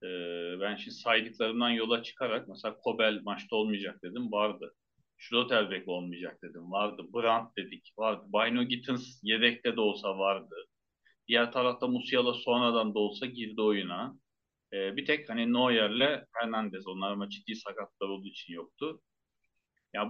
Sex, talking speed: male, 135 wpm